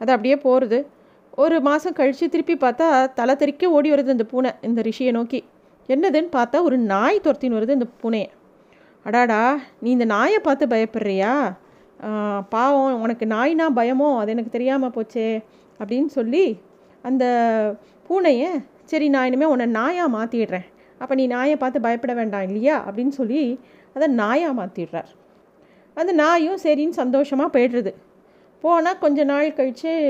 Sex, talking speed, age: female, 140 wpm, 30-49